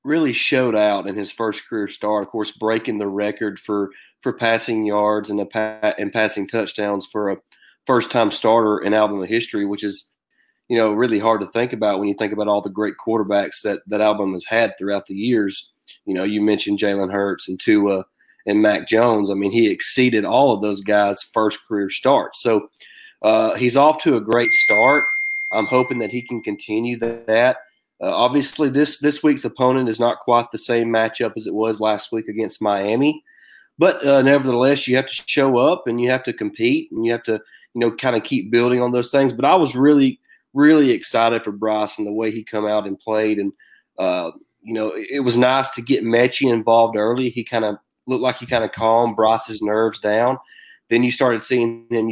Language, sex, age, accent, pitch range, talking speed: English, male, 30-49, American, 105-125 Hz, 215 wpm